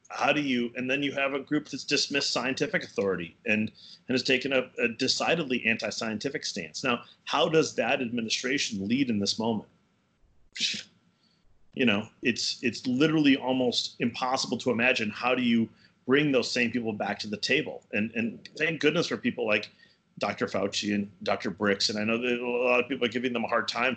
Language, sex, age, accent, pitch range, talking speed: English, male, 30-49, American, 110-140 Hz, 195 wpm